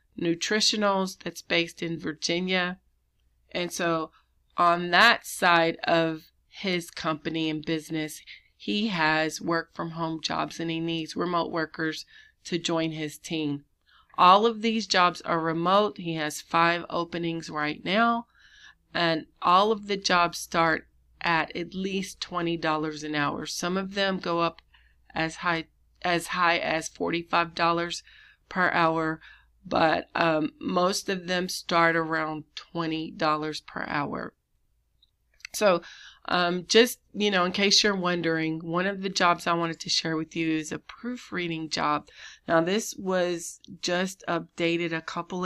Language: English